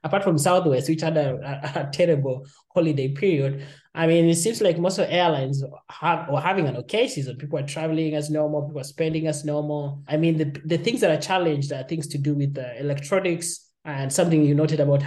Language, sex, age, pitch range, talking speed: English, male, 20-39, 140-175 Hz, 220 wpm